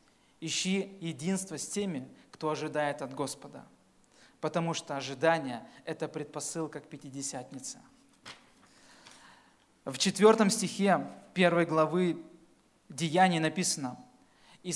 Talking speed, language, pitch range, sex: 100 wpm, Russian, 155-200 Hz, male